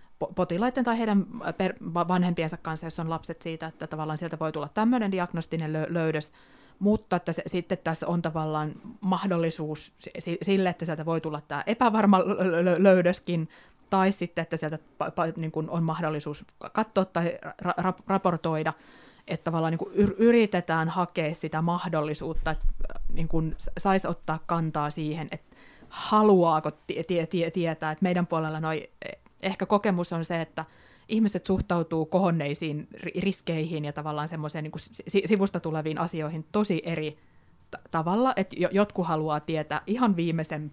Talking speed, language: 140 wpm, Finnish